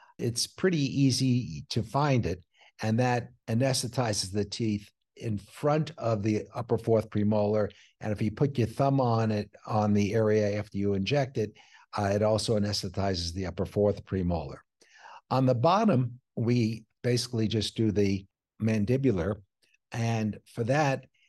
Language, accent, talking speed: English, American, 150 wpm